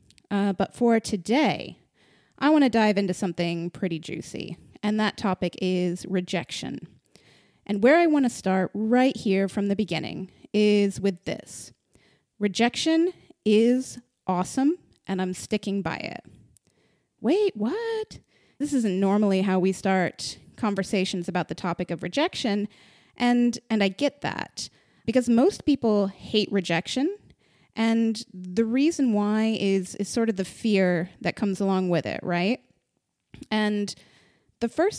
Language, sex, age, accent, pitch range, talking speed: English, female, 30-49, American, 190-240 Hz, 140 wpm